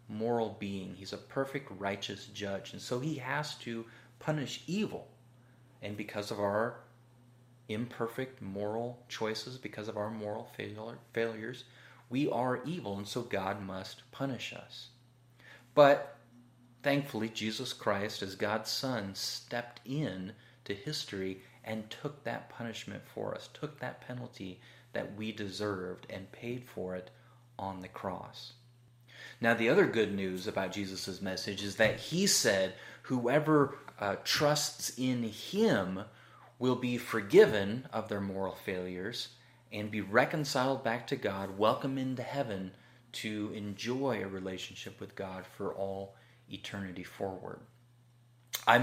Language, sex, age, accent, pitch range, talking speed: English, male, 30-49, American, 100-125 Hz, 135 wpm